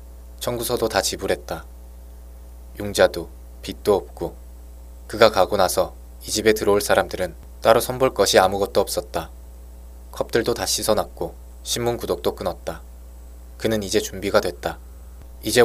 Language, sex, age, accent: Korean, male, 20-39, native